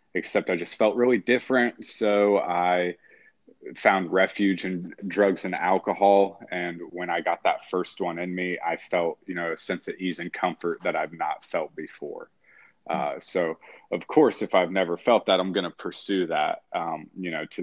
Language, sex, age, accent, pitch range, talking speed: English, male, 30-49, American, 90-110 Hz, 190 wpm